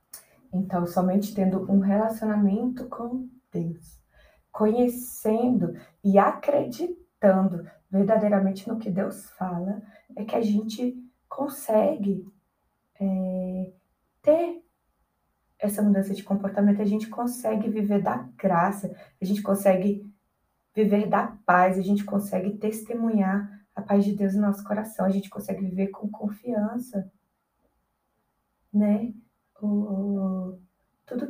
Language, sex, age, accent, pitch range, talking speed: Portuguese, female, 20-39, Brazilian, 195-220 Hz, 110 wpm